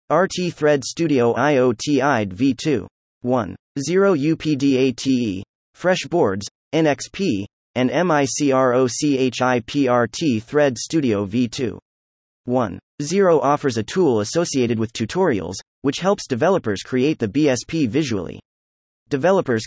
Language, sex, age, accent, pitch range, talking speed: English, male, 30-49, American, 115-155 Hz, 90 wpm